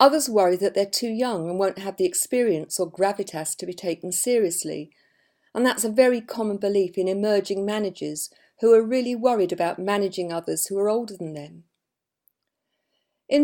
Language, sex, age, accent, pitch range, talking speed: English, female, 50-69, British, 180-245 Hz, 175 wpm